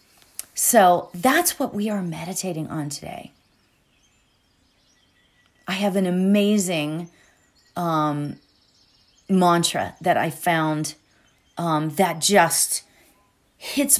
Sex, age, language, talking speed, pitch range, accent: female, 30-49, English, 90 wpm, 155-220 Hz, American